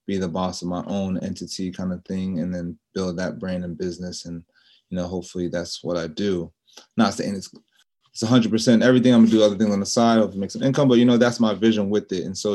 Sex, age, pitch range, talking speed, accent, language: male, 20-39, 90-110 Hz, 265 wpm, American, English